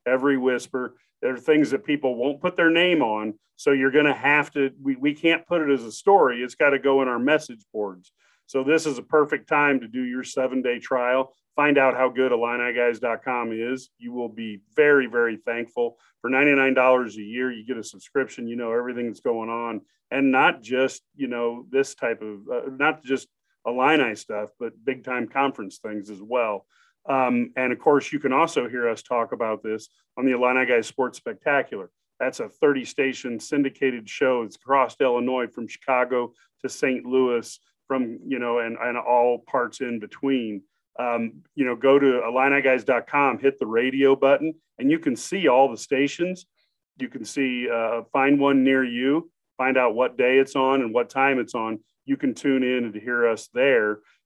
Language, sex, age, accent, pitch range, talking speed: English, male, 40-59, American, 120-135 Hz, 195 wpm